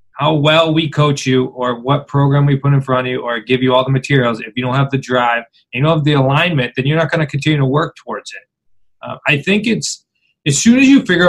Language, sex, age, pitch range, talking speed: English, male, 20-39, 125-150 Hz, 270 wpm